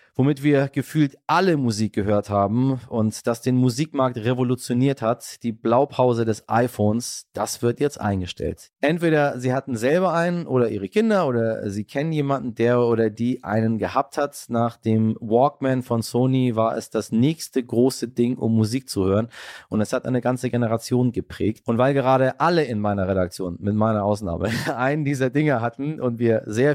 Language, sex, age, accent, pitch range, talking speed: German, male, 30-49, German, 115-145 Hz, 175 wpm